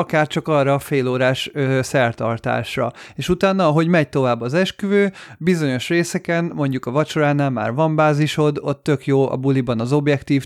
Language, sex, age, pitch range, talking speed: Hungarian, male, 30-49, 130-150 Hz, 160 wpm